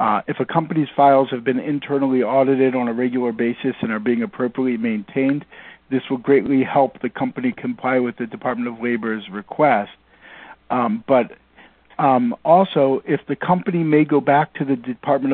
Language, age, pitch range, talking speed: English, 50-69, 130-155 Hz, 170 wpm